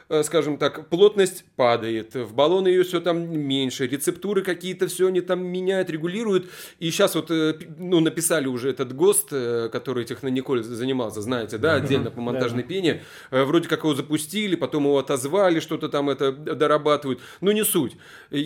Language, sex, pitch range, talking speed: Russian, male, 145-195 Hz, 155 wpm